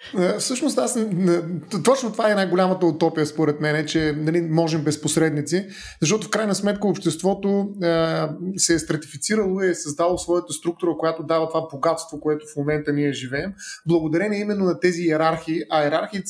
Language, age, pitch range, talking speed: Bulgarian, 30-49, 160-185 Hz, 160 wpm